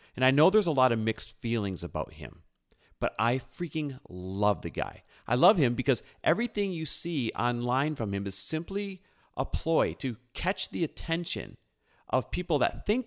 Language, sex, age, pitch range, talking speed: English, male, 40-59, 100-140 Hz, 180 wpm